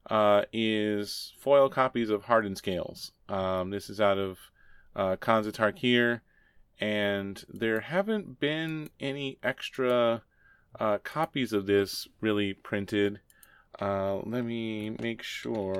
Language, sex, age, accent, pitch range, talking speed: English, male, 30-49, American, 100-125 Hz, 120 wpm